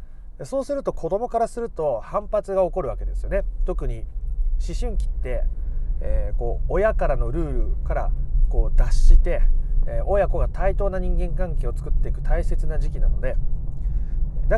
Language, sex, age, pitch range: Japanese, male, 30-49, 120-185 Hz